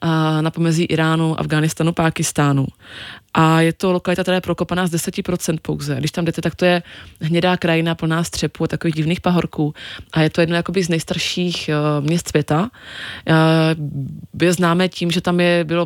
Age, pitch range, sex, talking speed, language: 20-39, 155-170 Hz, female, 180 wpm, Czech